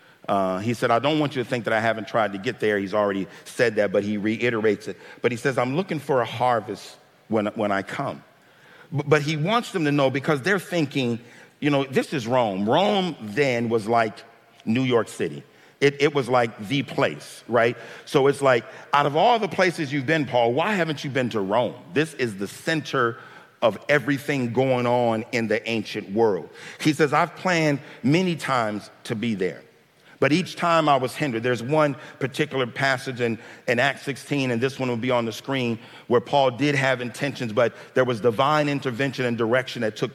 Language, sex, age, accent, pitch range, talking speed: English, male, 50-69, American, 120-145 Hz, 205 wpm